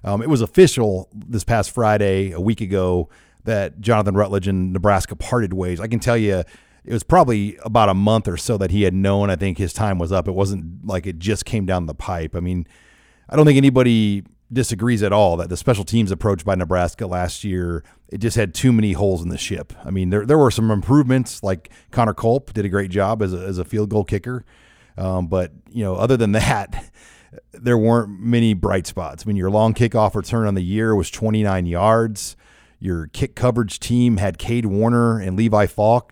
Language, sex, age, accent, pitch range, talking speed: English, male, 40-59, American, 95-120 Hz, 215 wpm